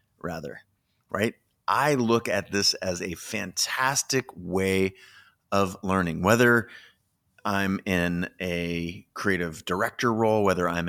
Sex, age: male, 30-49